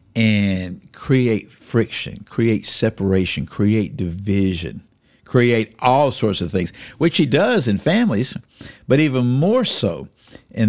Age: 60-79